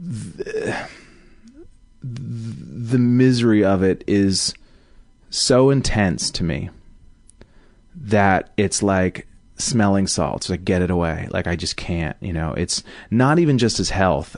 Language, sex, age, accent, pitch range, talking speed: English, male, 30-49, American, 80-105 Hz, 130 wpm